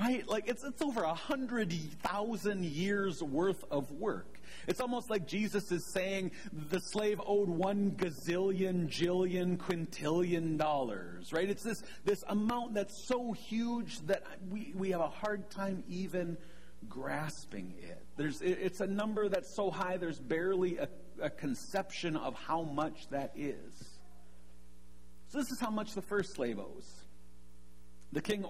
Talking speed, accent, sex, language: 145 wpm, American, male, English